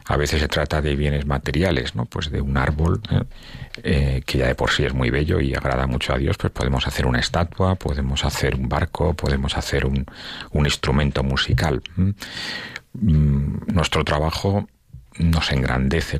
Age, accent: 40-59, Spanish